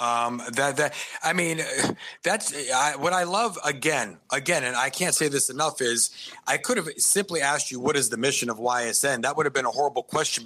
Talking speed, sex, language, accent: 210 wpm, male, English, American